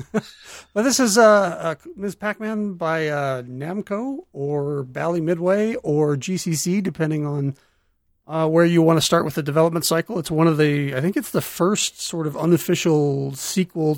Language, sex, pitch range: English, male, 145-180 Hz